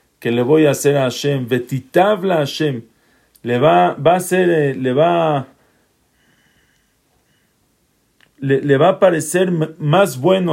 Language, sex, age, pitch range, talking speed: English, male, 40-59, 135-170 Hz, 120 wpm